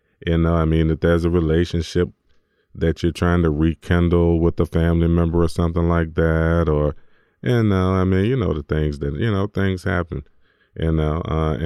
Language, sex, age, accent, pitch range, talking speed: English, male, 30-49, American, 75-85 Hz, 200 wpm